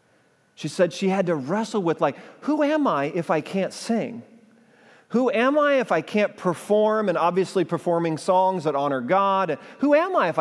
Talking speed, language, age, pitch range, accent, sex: 190 wpm, English, 40-59, 125-185 Hz, American, male